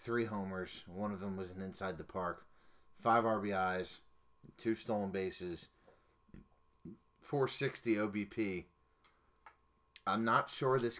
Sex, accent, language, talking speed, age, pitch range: male, American, English, 115 wpm, 30-49, 85-100 Hz